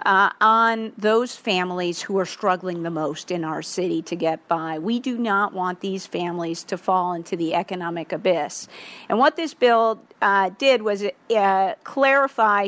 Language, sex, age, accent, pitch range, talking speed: English, female, 50-69, American, 185-230 Hz, 170 wpm